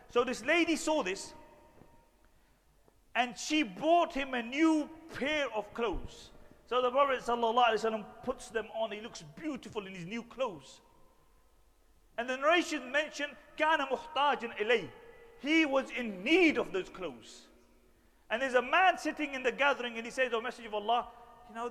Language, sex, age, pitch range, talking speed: English, male, 40-59, 210-275 Hz, 160 wpm